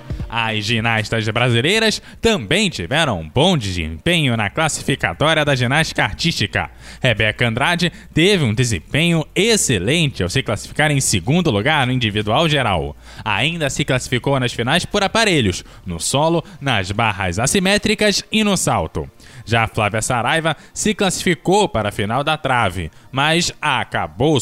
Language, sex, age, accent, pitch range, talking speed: Portuguese, male, 20-39, Brazilian, 115-170 Hz, 135 wpm